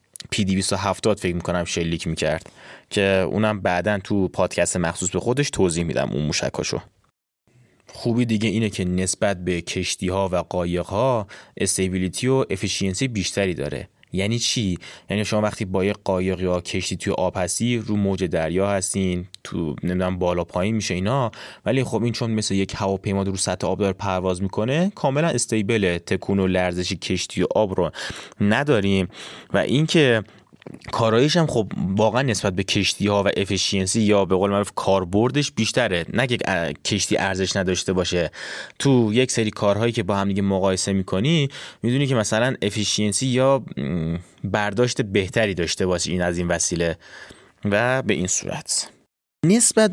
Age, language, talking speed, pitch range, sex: 20-39, Persian, 160 wpm, 95-120 Hz, male